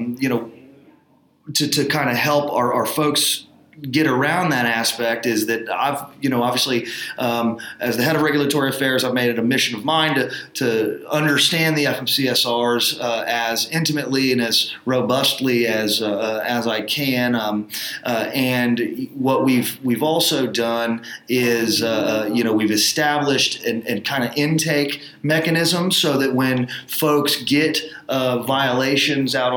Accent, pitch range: American, 120-145 Hz